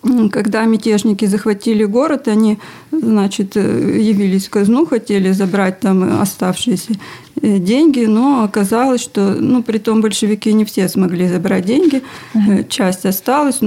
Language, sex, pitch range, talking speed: Russian, female, 200-245 Hz, 125 wpm